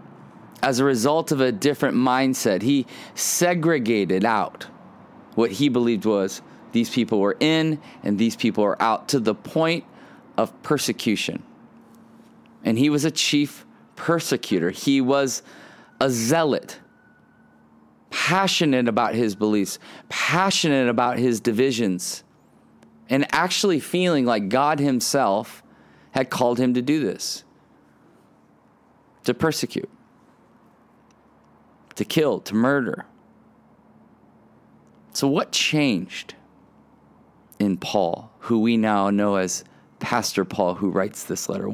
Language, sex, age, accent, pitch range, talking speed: English, male, 30-49, American, 115-160 Hz, 115 wpm